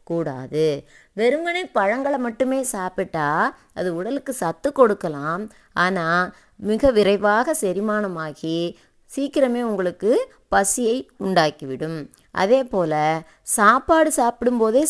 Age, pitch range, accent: 20-39, 170-245 Hz, native